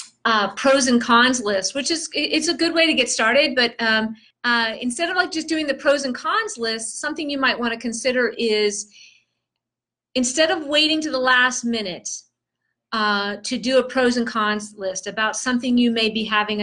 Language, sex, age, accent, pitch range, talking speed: English, female, 40-59, American, 215-270 Hz, 200 wpm